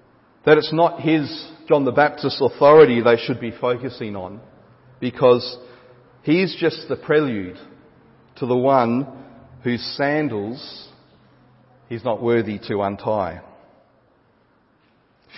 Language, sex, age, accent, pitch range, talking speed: English, male, 40-59, Australian, 120-150 Hz, 115 wpm